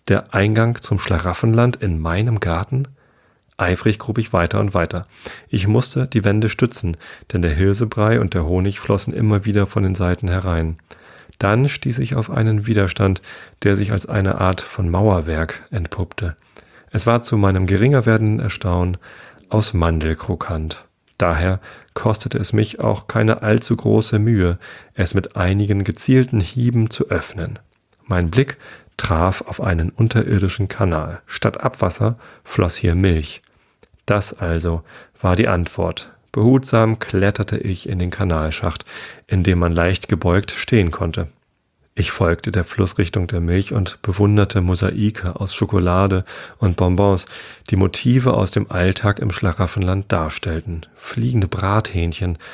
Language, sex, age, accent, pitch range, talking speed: German, male, 40-59, German, 90-110 Hz, 140 wpm